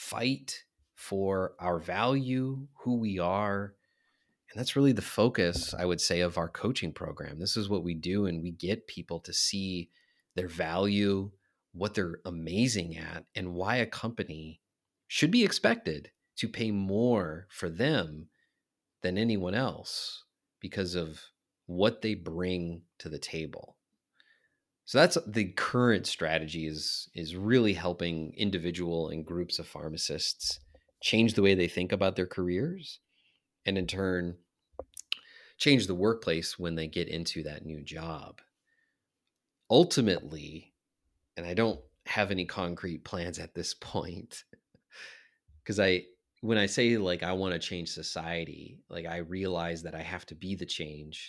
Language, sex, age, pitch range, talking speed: English, male, 30-49, 85-100 Hz, 145 wpm